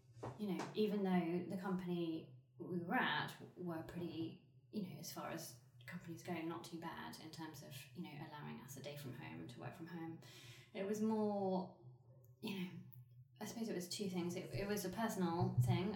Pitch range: 145-185 Hz